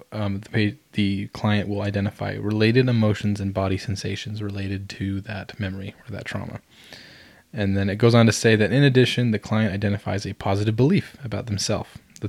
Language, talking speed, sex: English, 180 wpm, male